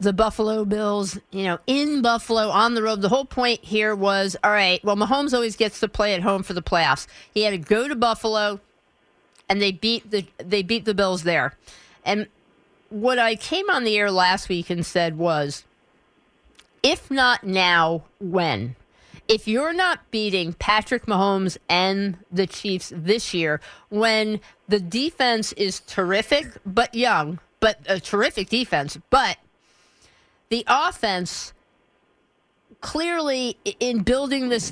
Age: 50-69